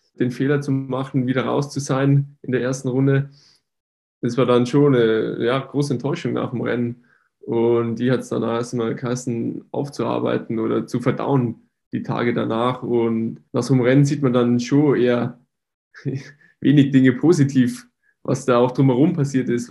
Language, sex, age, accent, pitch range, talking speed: German, male, 10-29, German, 120-135 Hz, 170 wpm